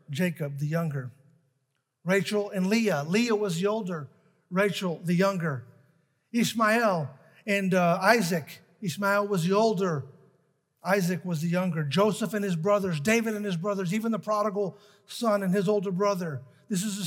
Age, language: 50-69, English